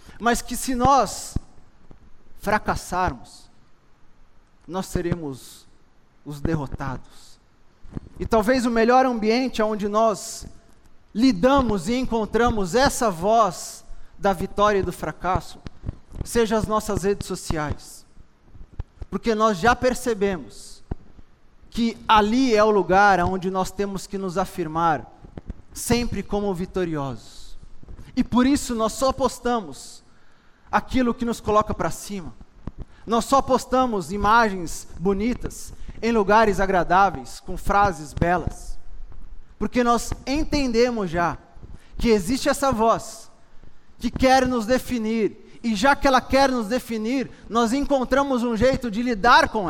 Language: Portuguese